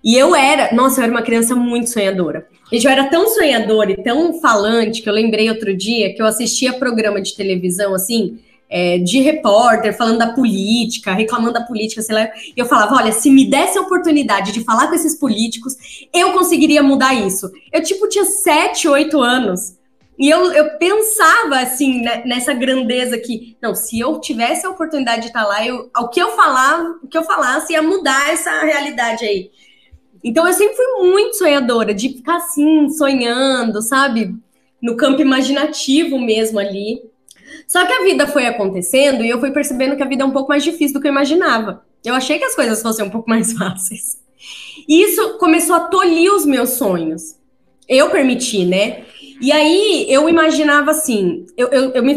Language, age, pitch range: Portuguese, 20-39, 220-300 Hz